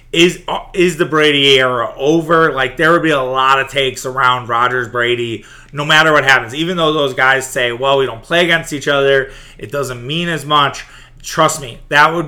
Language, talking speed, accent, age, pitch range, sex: English, 205 wpm, American, 30-49, 125-150 Hz, male